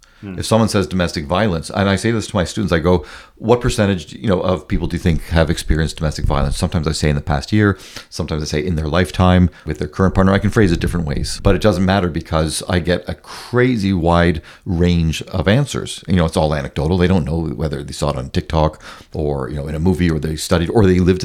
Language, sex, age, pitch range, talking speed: English, male, 40-59, 80-105 Hz, 250 wpm